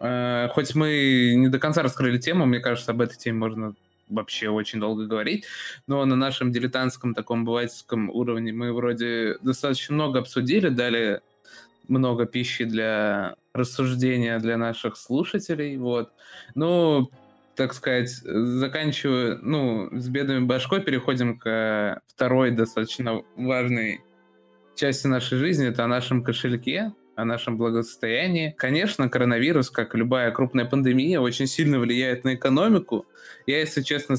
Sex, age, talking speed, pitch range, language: male, 20-39, 130 wpm, 115-135 Hz, Russian